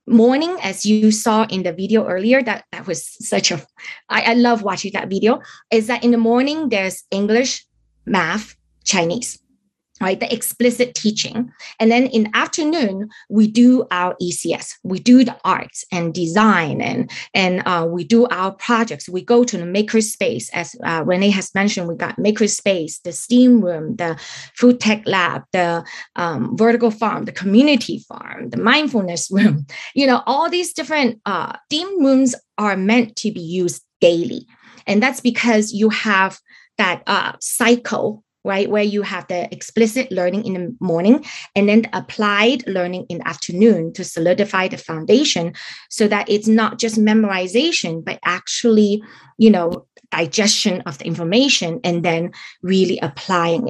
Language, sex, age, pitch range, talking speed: English, female, 20-39, 185-235 Hz, 160 wpm